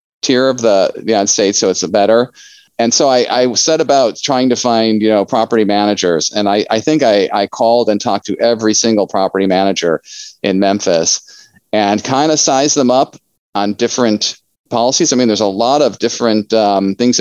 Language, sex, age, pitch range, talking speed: English, male, 40-59, 100-120 Hz, 190 wpm